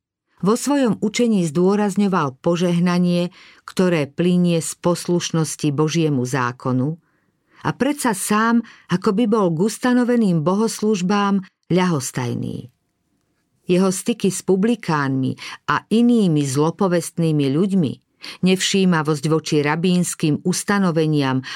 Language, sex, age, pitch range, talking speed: Slovak, female, 50-69, 155-195 Hz, 90 wpm